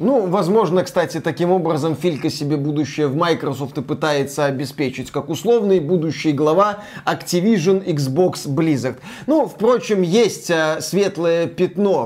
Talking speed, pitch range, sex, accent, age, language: 125 wpm, 150-200 Hz, male, native, 20-39, Russian